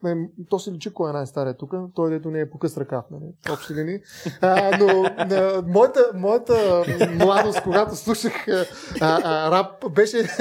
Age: 30-49